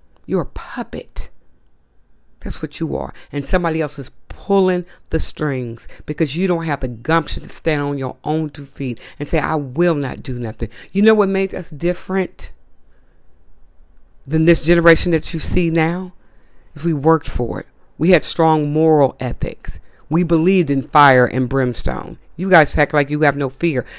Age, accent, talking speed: 40-59, American, 180 wpm